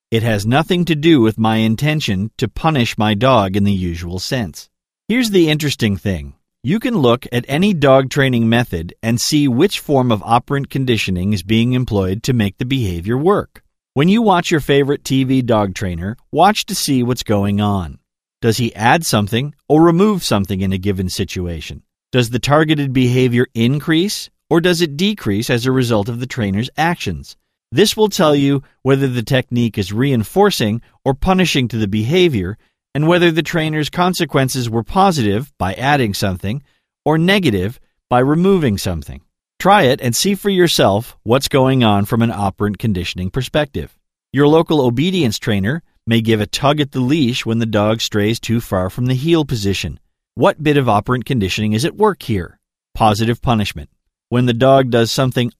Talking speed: 175 wpm